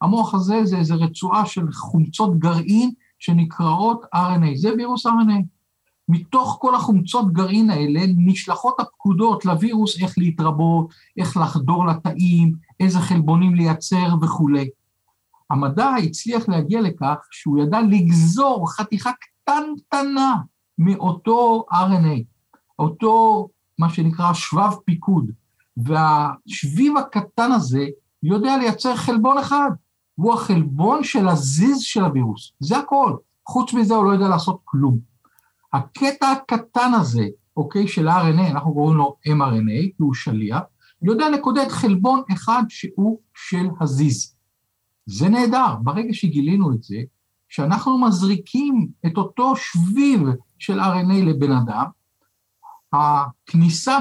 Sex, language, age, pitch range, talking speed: male, Hebrew, 50-69, 160-225 Hz, 115 wpm